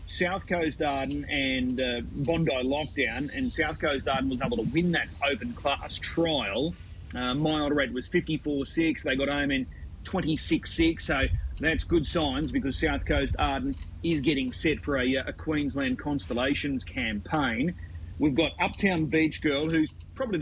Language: English